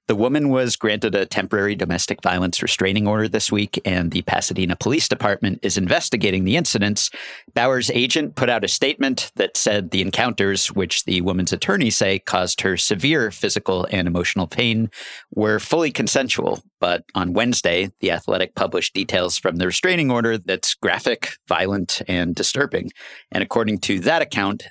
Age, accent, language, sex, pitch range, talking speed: 50-69, American, English, male, 90-115 Hz, 165 wpm